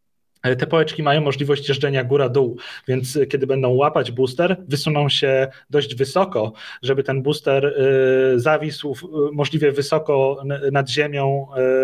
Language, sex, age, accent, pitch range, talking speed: Polish, male, 30-49, native, 135-160 Hz, 115 wpm